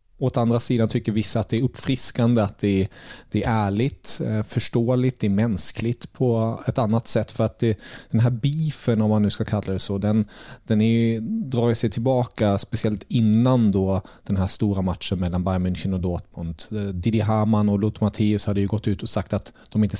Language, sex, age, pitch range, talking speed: Swedish, male, 30-49, 100-120 Hz, 200 wpm